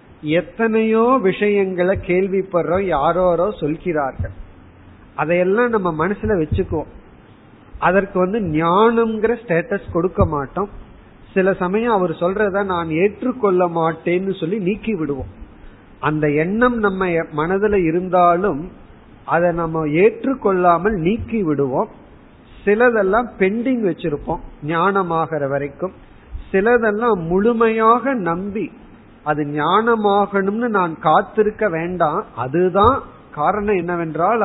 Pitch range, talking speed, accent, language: 160-215 Hz, 80 wpm, native, Tamil